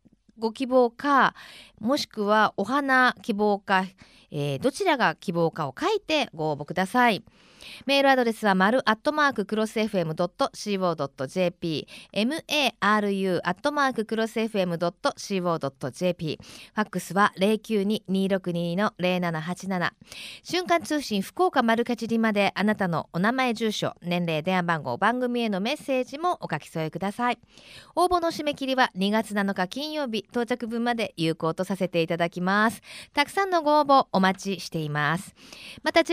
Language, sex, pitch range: Japanese, female, 175-255 Hz